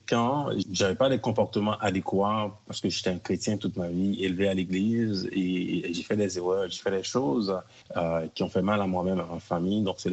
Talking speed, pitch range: 230 wpm, 95-110 Hz